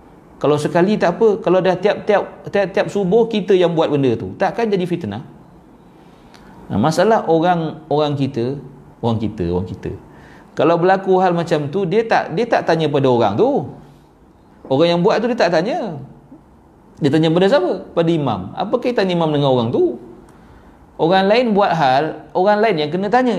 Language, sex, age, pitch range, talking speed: Malay, male, 40-59, 130-205 Hz, 175 wpm